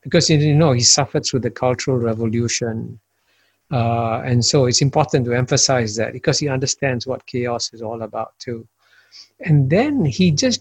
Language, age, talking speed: English, 60-79, 170 wpm